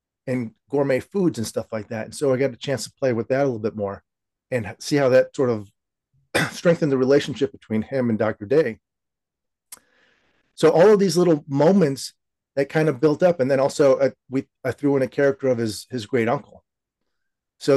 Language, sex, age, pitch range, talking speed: English, male, 40-59, 120-155 Hz, 210 wpm